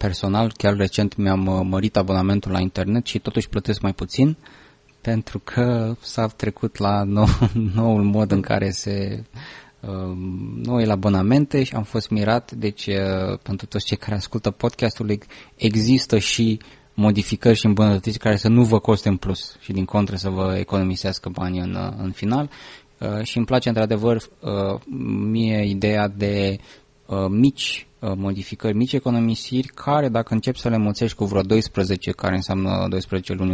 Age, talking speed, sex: 20-39, 160 wpm, male